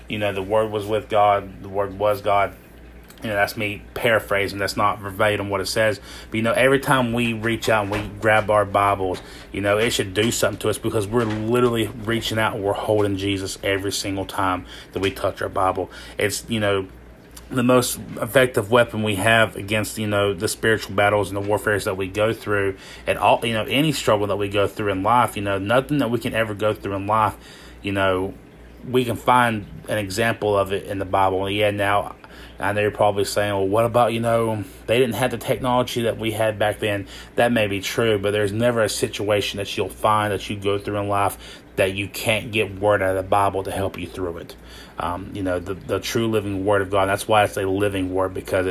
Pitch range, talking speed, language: 100-110 Hz, 230 wpm, English